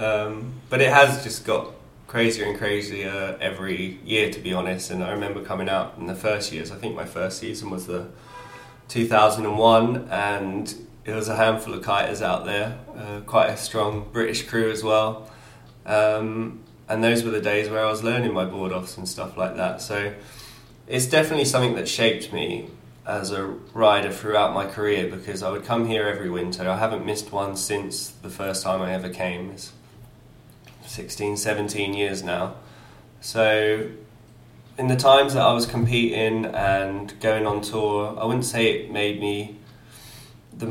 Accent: British